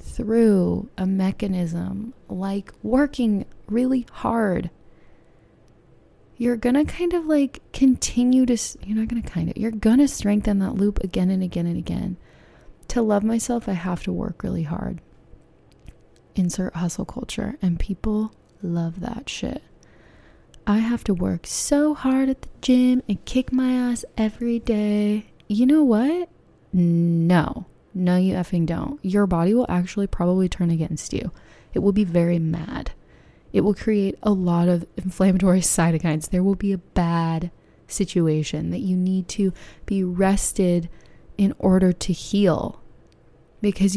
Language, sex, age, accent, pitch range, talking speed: English, female, 20-39, American, 180-230 Hz, 145 wpm